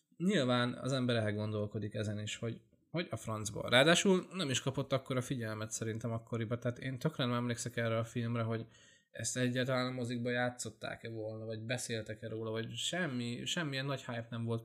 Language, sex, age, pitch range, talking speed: Hungarian, male, 20-39, 110-130 Hz, 175 wpm